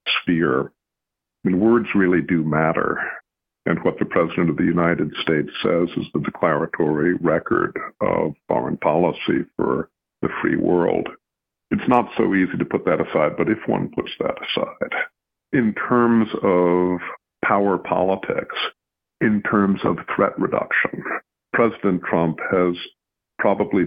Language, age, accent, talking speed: English, 50-69, American, 135 wpm